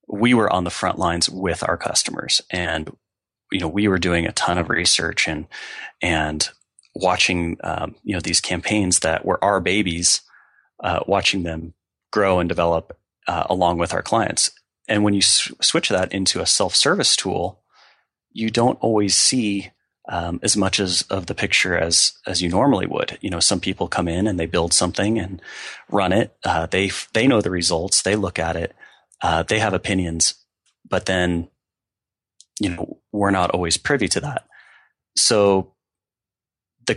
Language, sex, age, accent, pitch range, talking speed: English, male, 30-49, American, 85-100 Hz, 170 wpm